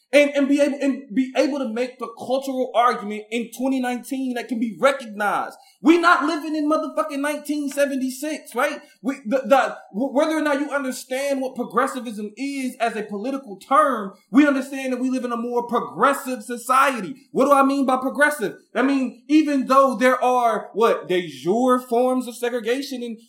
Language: English